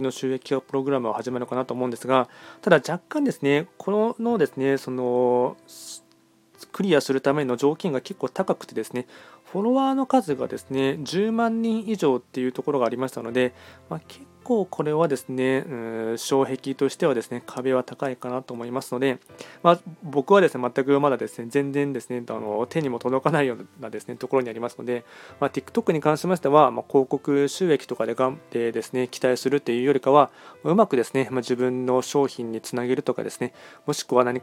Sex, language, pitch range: male, Japanese, 125-145 Hz